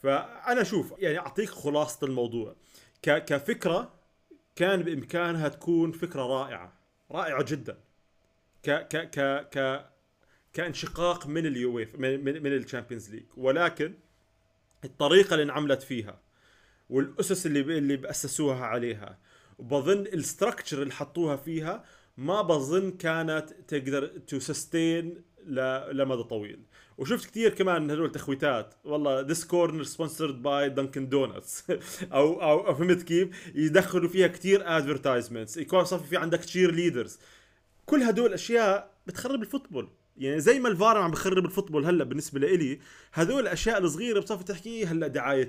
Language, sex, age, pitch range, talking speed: Arabic, male, 30-49, 135-175 Hz, 130 wpm